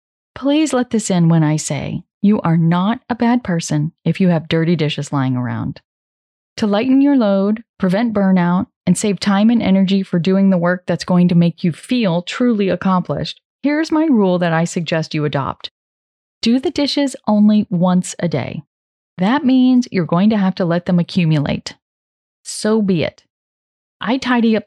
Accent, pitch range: American, 165-225 Hz